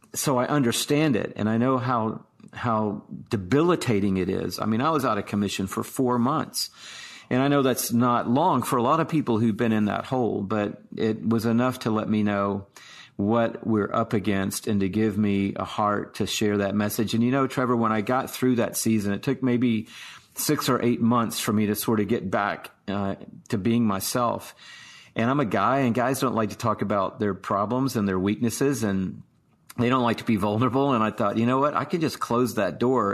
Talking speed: 225 wpm